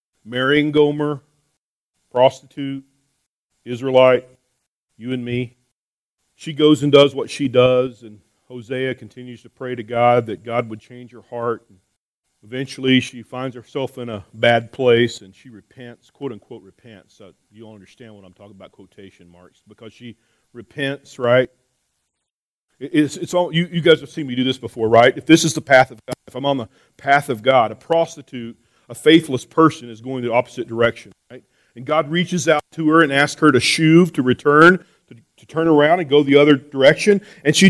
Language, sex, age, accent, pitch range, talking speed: English, male, 40-59, American, 120-165 Hz, 190 wpm